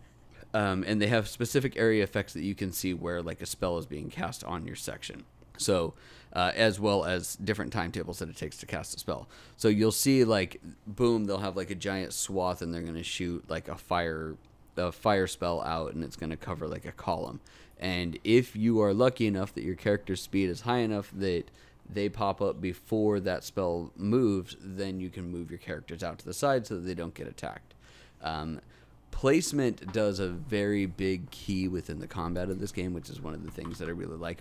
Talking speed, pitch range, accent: 220 wpm, 85-105 Hz, American